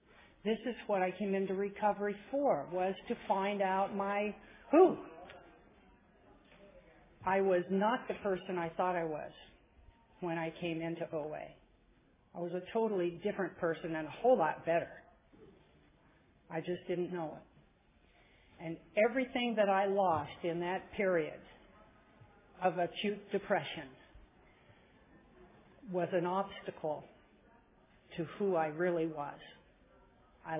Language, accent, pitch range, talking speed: English, American, 165-200 Hz, 125 wpm